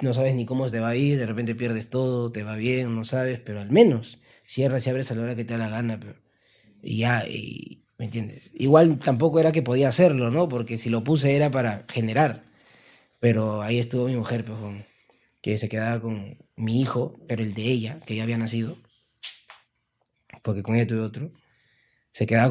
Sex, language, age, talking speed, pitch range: male, Spanish, 30-49, 210 wpm, 110-135 Hz